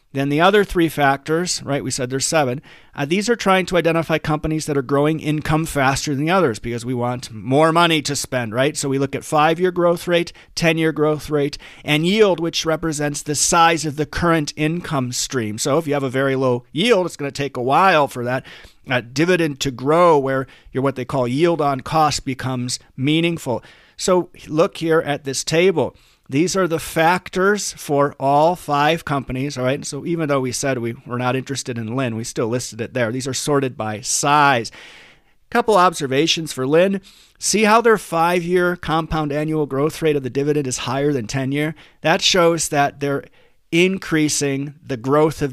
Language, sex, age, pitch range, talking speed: English, male, 40-59, 130-165 Hz, 195 wpm